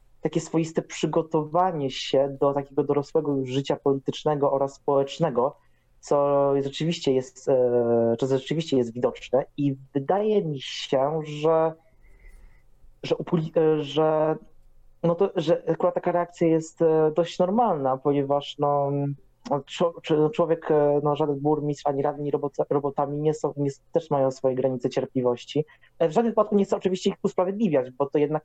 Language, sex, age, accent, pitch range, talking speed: Polish, male, 20-39, native, 135-165 Hz, 135 wpm